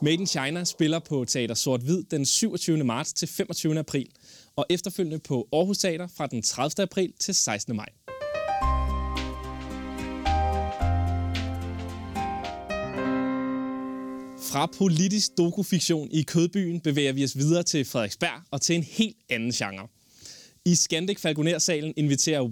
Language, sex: Danish, male